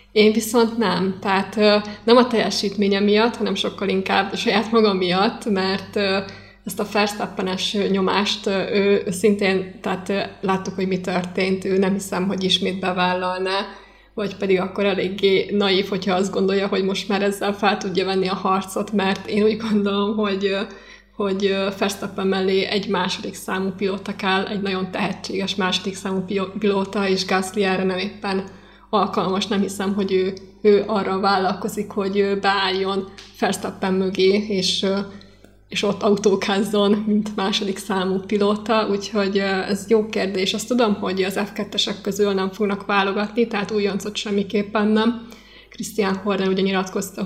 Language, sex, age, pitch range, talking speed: Hungarian, female, 20-39, 190-210 Hz, 145 wpm